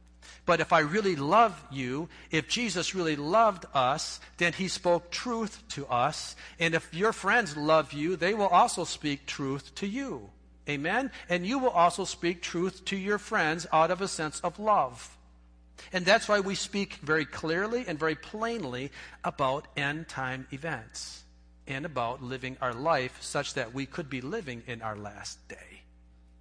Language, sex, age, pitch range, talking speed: English, male, 50-69, 120-185 Hz, 170 wpm